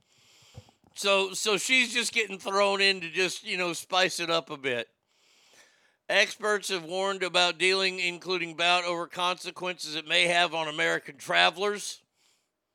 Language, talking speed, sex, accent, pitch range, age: English, 145 wpm, male, American, 150-205 Hz, 50-69